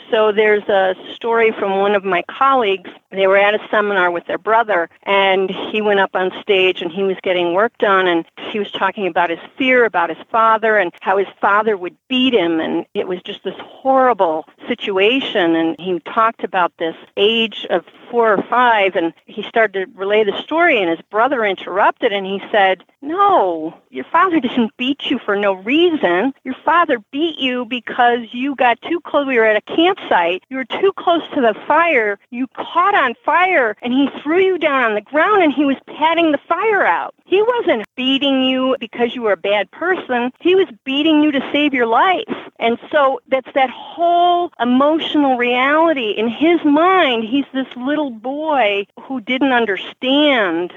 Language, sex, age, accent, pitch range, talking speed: English, female, 50-69, American, 205-290 Hz, 190 wpm